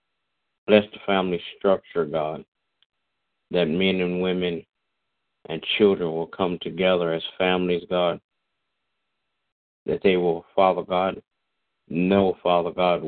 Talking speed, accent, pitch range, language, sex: 115 wpm, American, 85-95 Hz, English, male